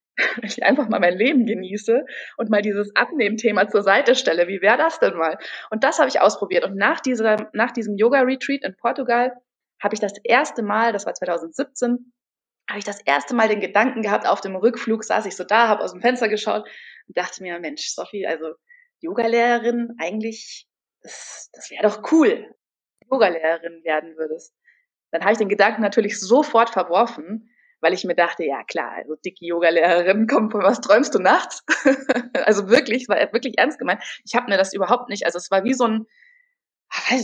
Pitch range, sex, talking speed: 195-260 Hz, female, 190 wpm